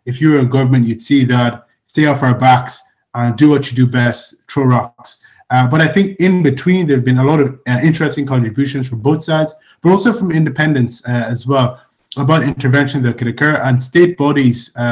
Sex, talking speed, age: male, 210 wpm, 20-39